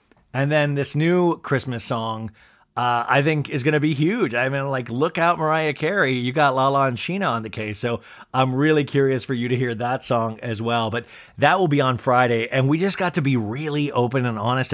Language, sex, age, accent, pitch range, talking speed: English, male, 30-49, American, 110-150 Hz, 230 wpm